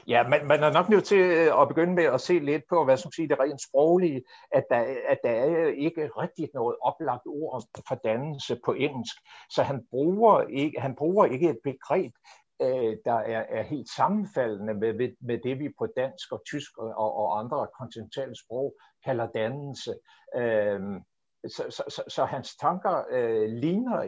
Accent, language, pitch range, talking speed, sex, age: native, Danish, 125-210 Hz, 180 wpm, male, 60-79